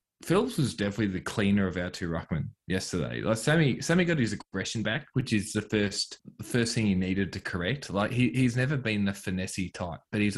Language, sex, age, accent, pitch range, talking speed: English, male, 20-39, Australian, 90-105 Hz, 220 wpm